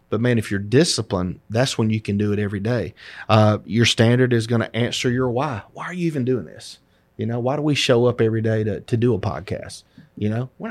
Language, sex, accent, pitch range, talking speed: English, male, American, 110-135 Hz, 250 wpm